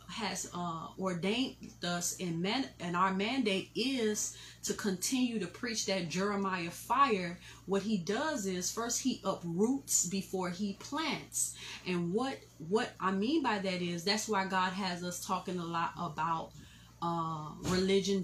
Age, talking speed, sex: 30-49, 150 wpm, female